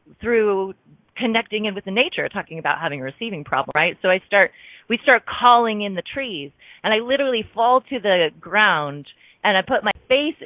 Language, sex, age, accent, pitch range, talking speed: English, female, 30-49, American, 165-215 Hz, 195 wpm